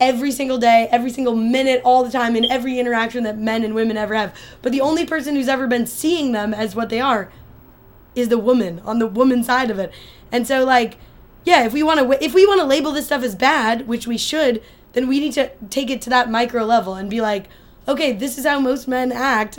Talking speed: 240 wpm